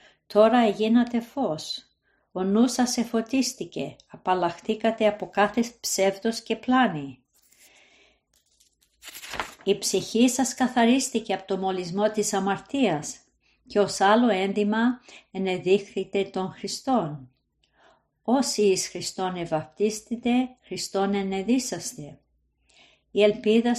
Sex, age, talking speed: female, 50-69, 95 wpm